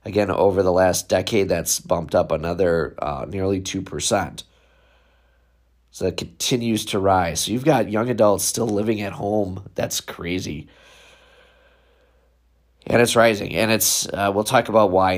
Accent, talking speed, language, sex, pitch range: American, 155 wpm, English, male, 95-120 Hz